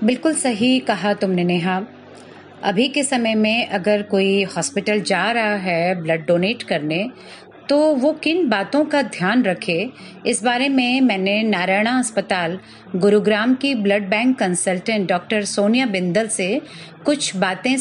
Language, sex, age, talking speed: Hindi, female, 40-59, 140 wpm